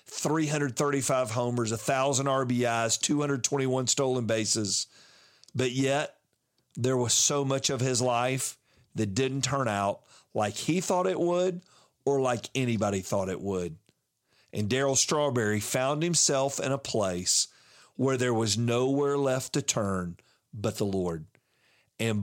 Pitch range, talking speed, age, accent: 110-135 Hz, 135 wpm, 40-59, American